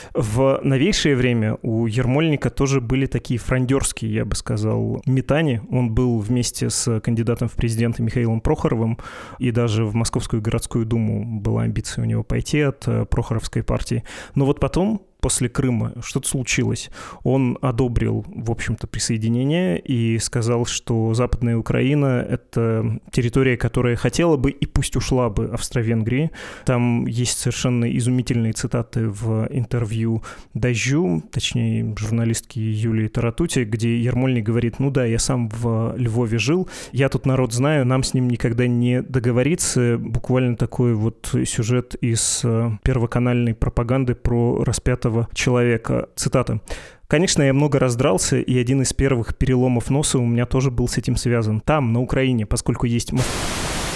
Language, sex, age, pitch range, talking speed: Russian, male, 20-39, 115-130 Hz, 145 wpm